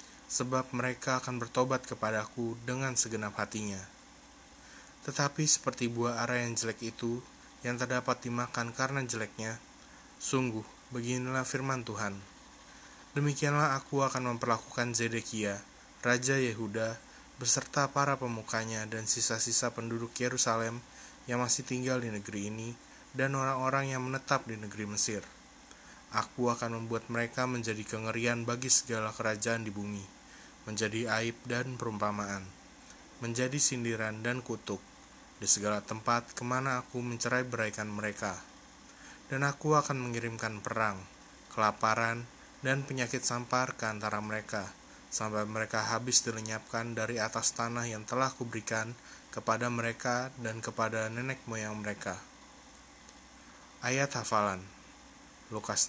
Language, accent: Indonesian, native